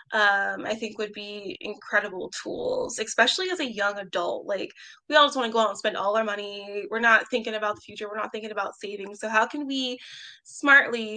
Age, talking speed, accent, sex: 20-39, 220 wpm, American, female